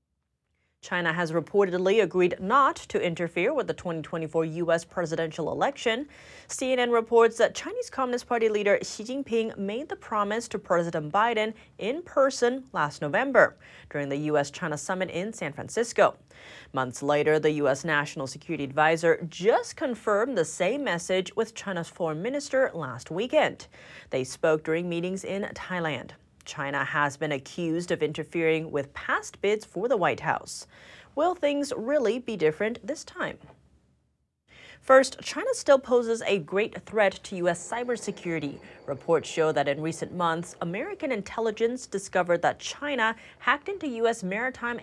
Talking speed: 145 wpm